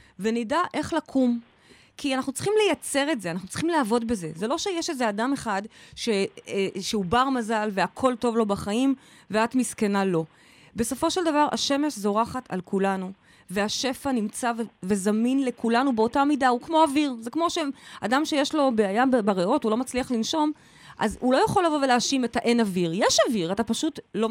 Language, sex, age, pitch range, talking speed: Hebrew, female, 20-39, 200-270 Hz, 180 wpm